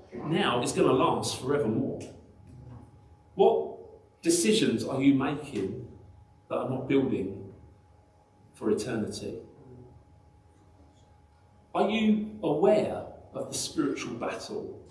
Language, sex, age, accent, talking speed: English, male, 40-59, British, 100 wpm